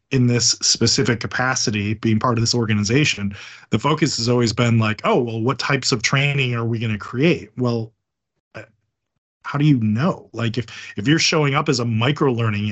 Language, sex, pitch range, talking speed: English, male, 110-130 Hz, 195 wpm